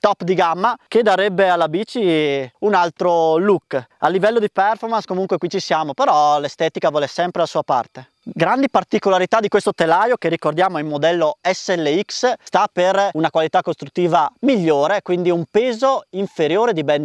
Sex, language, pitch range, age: male, Italian, 165-210 Hz, 20-39